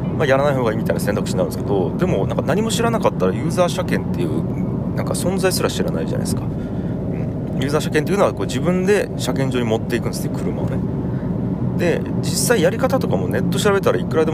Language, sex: Japanese, male